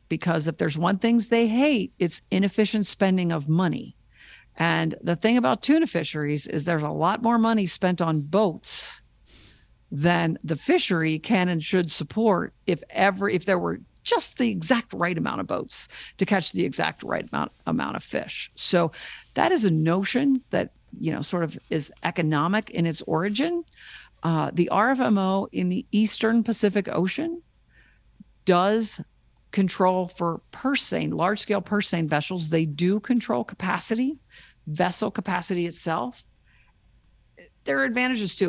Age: 50-69